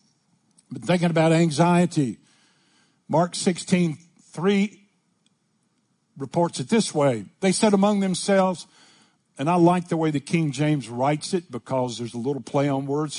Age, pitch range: 60-79, 145-185 Hz